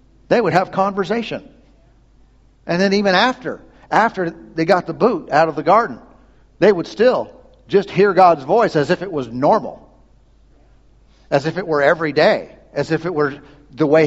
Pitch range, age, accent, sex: 145-190 Hz, 50-69, American, male